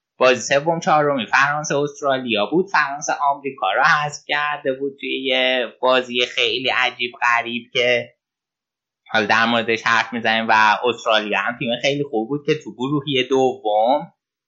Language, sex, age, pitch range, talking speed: Persian, male, 20-39, 110-140 Hz, 145 wpm